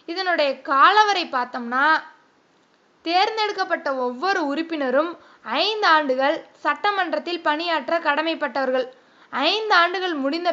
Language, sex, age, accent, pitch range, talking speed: Tamil, female, 20-39, native, 285-355 Hz, 80 wpm